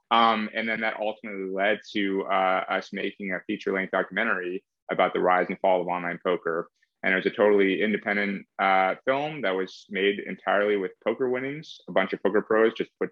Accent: American